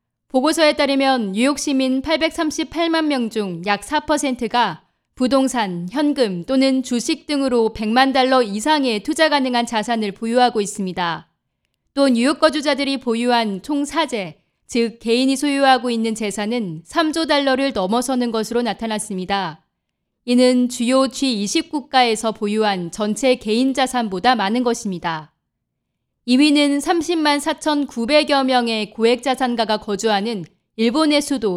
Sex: female